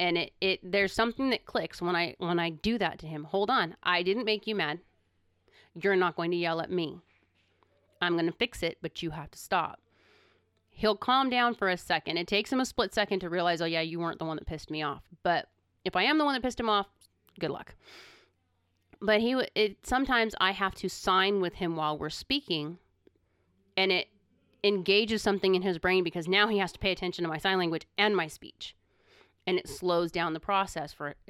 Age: 30-49